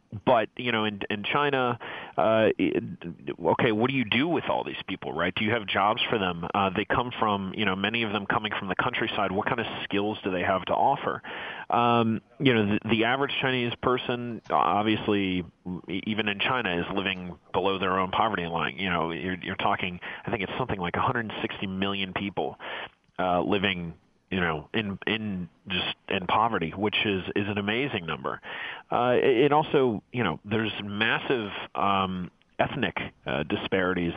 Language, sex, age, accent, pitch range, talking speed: English, male, 30-49, American, 90-110 Hz, 185 wpm